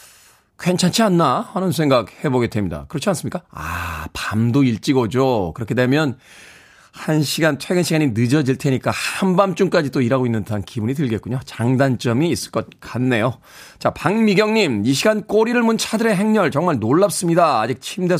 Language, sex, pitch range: Korean, male, 115-160 Hz